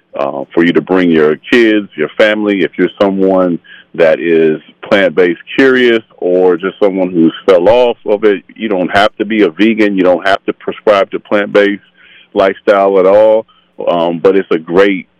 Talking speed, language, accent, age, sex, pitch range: 180 wpm, English, American, 40-59, male, 90-110 Hz